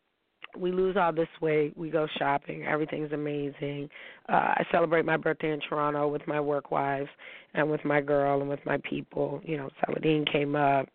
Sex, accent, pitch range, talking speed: female, American, 145-165 Hz, 185 wpm